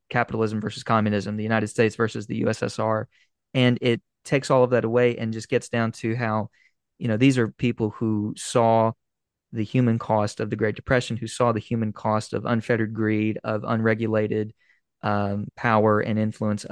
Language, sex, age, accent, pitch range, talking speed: English, male, 20-39, American, 110-120 Hz, 180 wpm